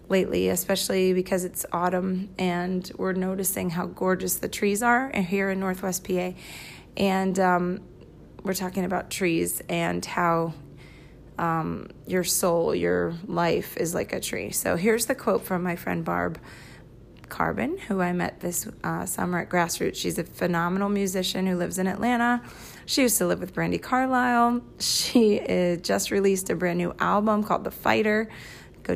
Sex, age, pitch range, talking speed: female, 30-49, 170-200 Hz, 160 wpm